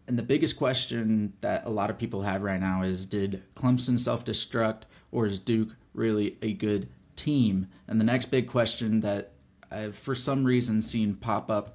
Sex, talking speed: male, 185 wpm